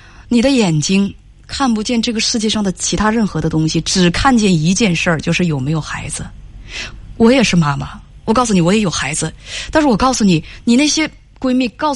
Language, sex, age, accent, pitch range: Chinese, female, 20-39, native, 180-290 Hz